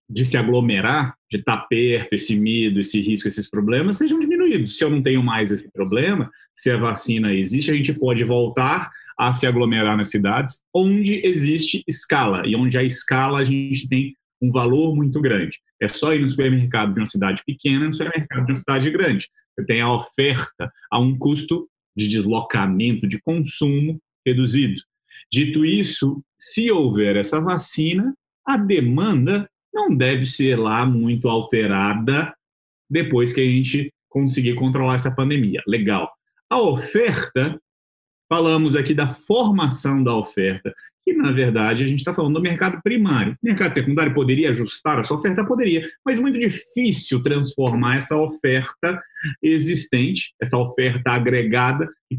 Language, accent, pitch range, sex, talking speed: Portuguese, Brazilian, 125-165 Hz, male, 155 wpm